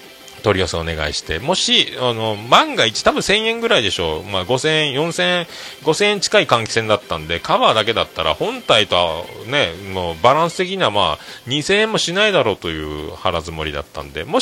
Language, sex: Japanese, male